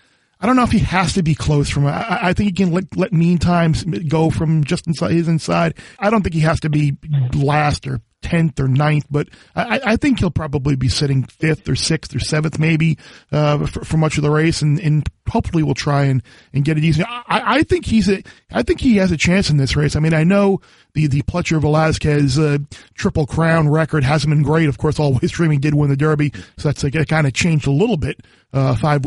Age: 40-59